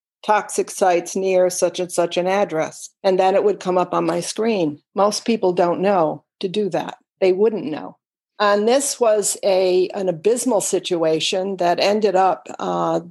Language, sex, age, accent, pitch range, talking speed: English, female, 60-79, American, 180-220 Hz, 175 wpm